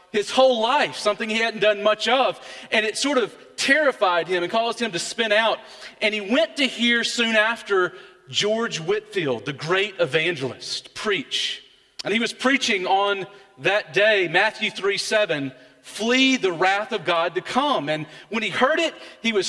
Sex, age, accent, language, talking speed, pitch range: male, 40-59, American, English, 180 wpm, 165-225 Hz